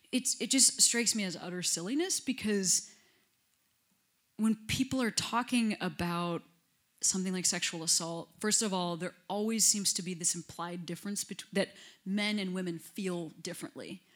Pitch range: 175-210 Hz